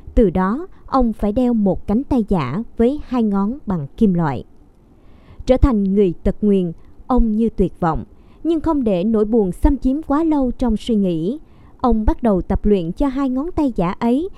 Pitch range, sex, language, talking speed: 195-260 Hz, male, Vietnamese, 195 wpm